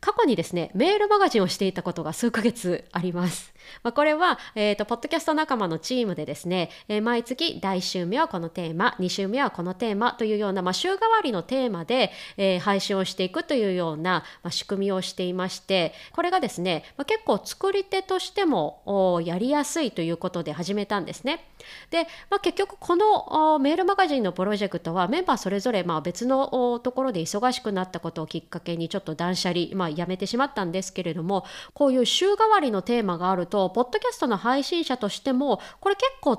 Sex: female